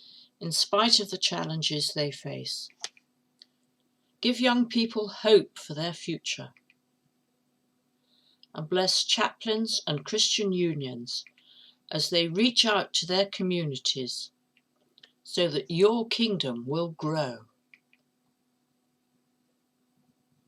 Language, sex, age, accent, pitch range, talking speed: English, female, 50-69, British, 135-200 Hz, 95 wpm